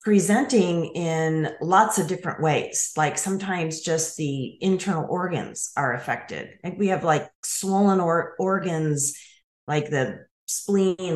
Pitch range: 155-200 Hz